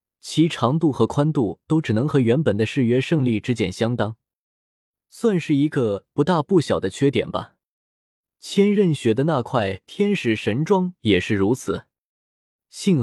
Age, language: 20-39, Chinese